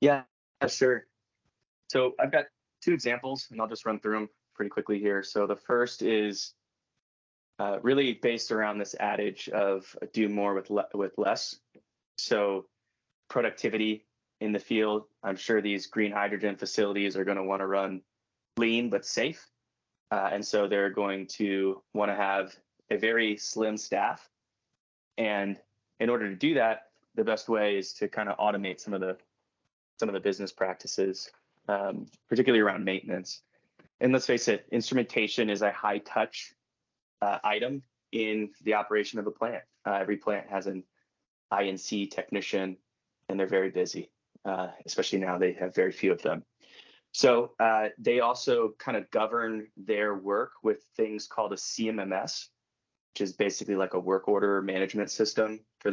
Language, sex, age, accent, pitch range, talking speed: English, male, 20-39, American, 100-110 Hz, 165 wpm